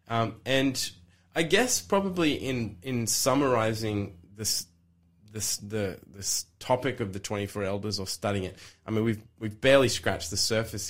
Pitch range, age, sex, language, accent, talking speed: 100-125 Hz, 20-39, male, English, Australian, 155 wpm